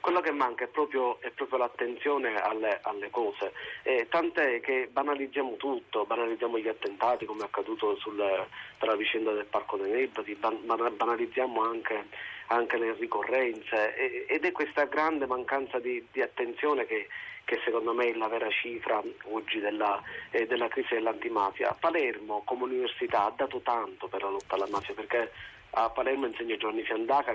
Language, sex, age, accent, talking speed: Italian, male, 30-49, native, 160 wpm